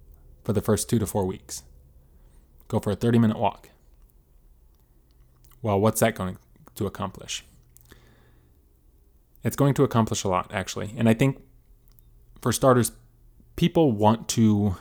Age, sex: 20-39, male